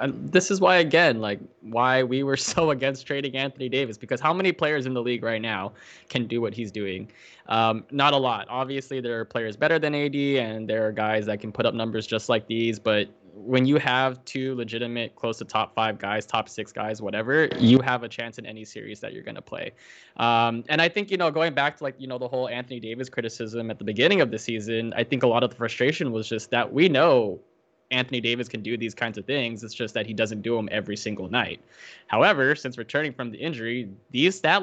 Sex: male